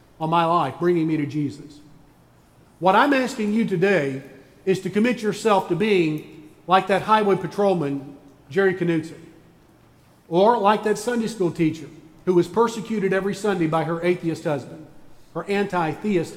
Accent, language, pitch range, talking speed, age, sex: American, English, 150-195 Hz, 150 wpm, 50-69, male